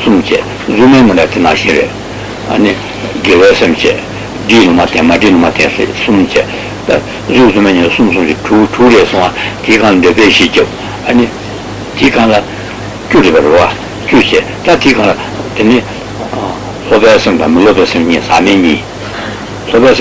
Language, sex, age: Italian, male, 60-79